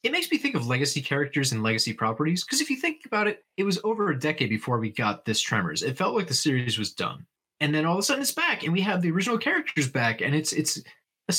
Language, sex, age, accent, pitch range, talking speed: English, male, 30-49, American, 115-175 Hz, 275 wpm